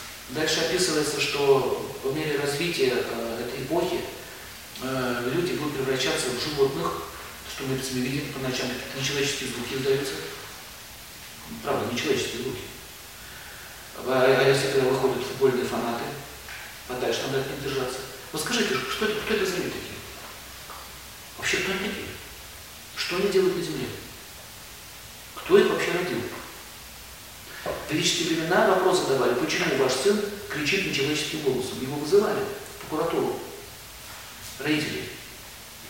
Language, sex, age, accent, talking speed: Russian, male, 40-59, native, 130 wpm